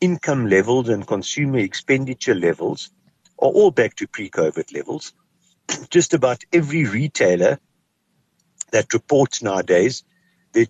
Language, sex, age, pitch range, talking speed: English, male, 60-79, 115-170 Hz, 110 wpm